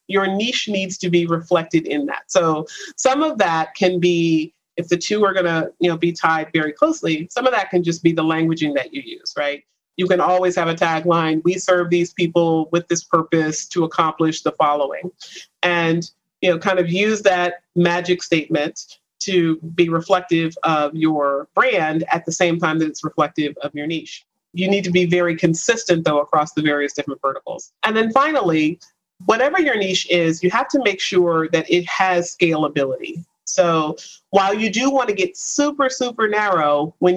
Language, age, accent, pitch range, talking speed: English, 40-59, American, 160-195 Hz, 190 wpm